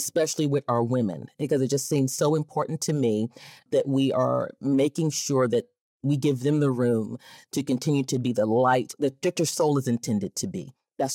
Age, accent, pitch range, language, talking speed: 30-49, American, 120-145 Hz, English, 200 wpm